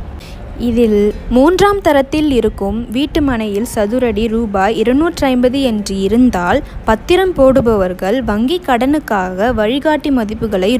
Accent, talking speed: native, 100 wpm